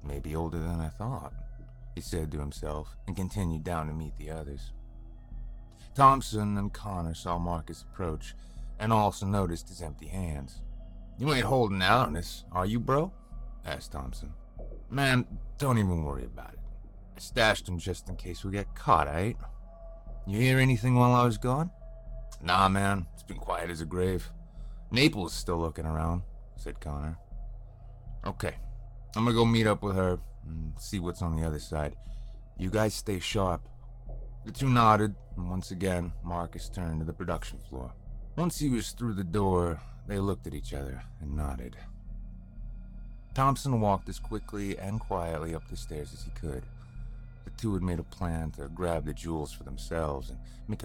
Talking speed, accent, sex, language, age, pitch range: 175 wpm, American, male, English, 30-49, 80-115 Hz